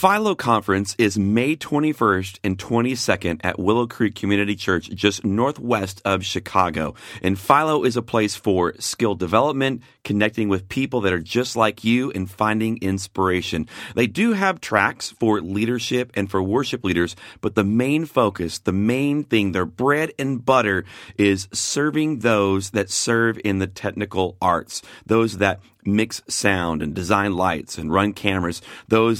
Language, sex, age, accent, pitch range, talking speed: English, male, 40-59, American, 95-125 Hz, 155 wpm